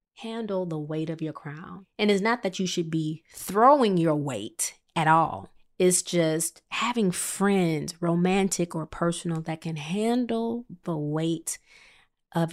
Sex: female